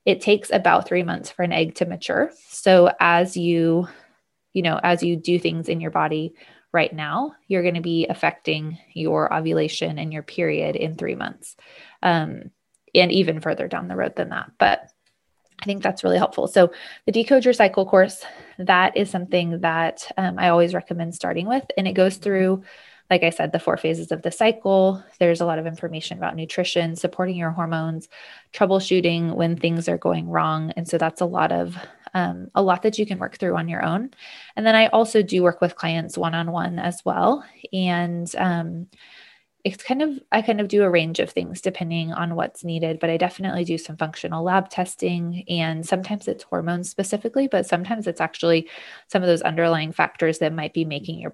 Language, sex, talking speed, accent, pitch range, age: English, female, 195 wpm, American, 165-190 Hz, 20-39